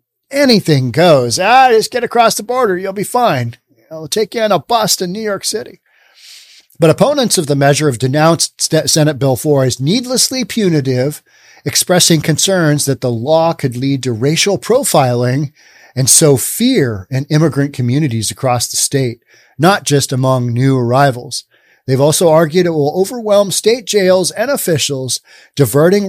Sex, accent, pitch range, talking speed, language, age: male, American, 130-185 Hz, 160 wpm, English, 40-59